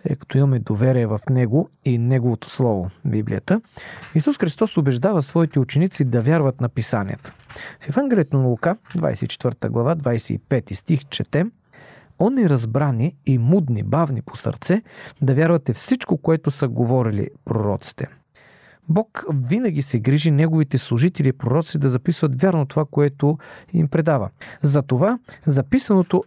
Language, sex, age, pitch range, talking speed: Bulgarian, male, 40-59, 120-165 Hz, 135 wpm